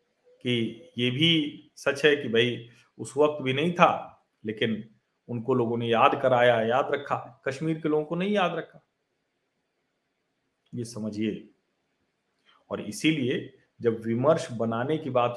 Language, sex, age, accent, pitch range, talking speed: Hindi, male, 50-69, native, 120-175 Hz, 140 wpm